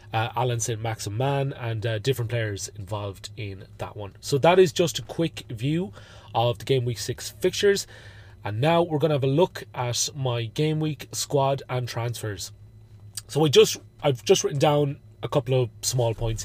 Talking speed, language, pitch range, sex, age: 205 wpm, English, 110-135 Hz, male, 30-49